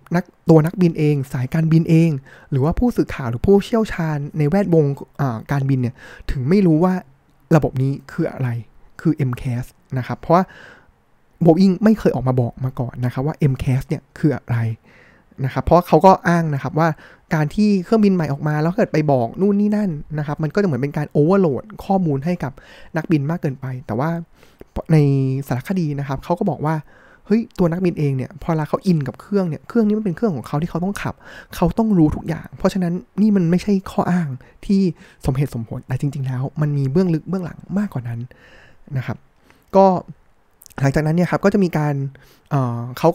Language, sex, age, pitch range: Thai, male, 20-39, 135-180 Hz